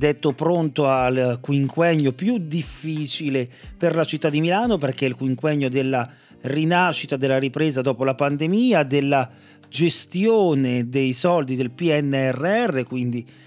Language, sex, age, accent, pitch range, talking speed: Italian, male, 40-59, native, 135-195 Hz, 130 wpm